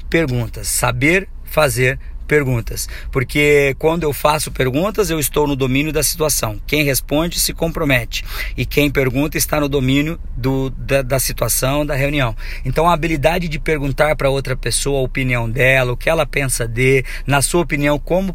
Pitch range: 130-155 Hz